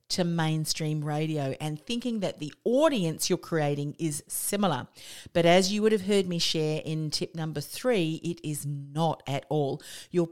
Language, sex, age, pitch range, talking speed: English, female, 40-59, 155-190 Hz, 175 wpm